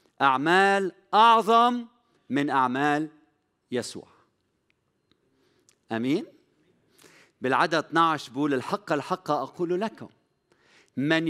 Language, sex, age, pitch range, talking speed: Arabic, male, 50-69, 125-175 Hz, 75 wpm